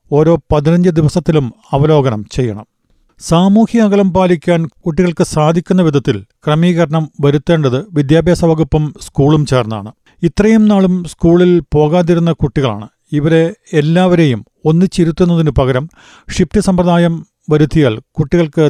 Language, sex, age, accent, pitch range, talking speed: Malayalam, male, 40-59, native, 145-175 Hz, 95 wpm